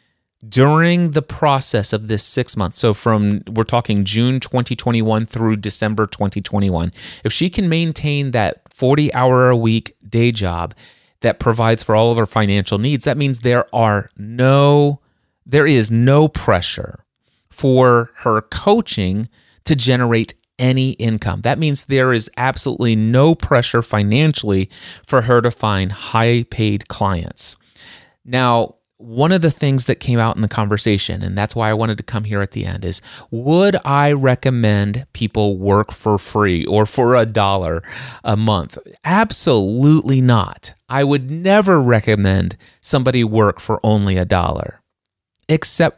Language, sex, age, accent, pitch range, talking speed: English, male, 30-49, American, 105-135 Hz, 145 wpm